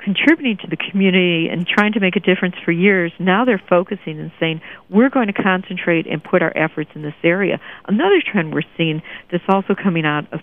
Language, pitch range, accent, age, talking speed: English, 165-200 Hz, American, 50-69, 215 wpm